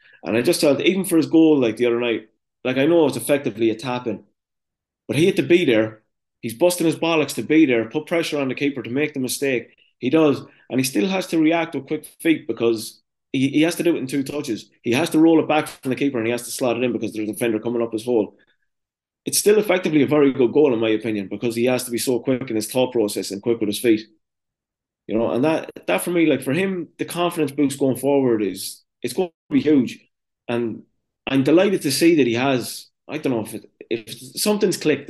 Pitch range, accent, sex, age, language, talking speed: 115-150 Hz, British, male, 20-39, English, 255 wpm